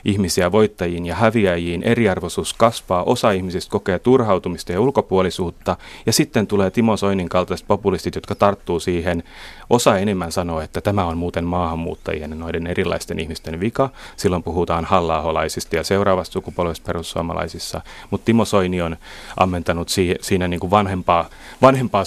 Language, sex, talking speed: Finnish, male, 140 wpm